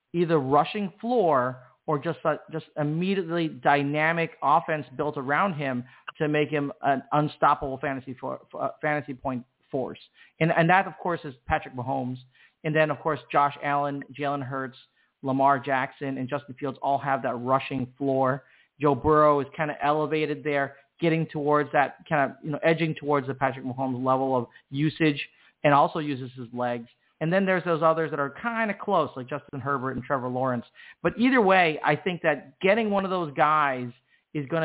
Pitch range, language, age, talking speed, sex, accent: 140-165 Hz, English, 40-59, 185 wpm, male, American